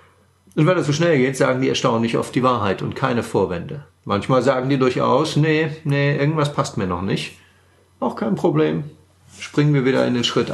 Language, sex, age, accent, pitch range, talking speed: German, male, 40-59, German, 100-140 Hz, 200 wpm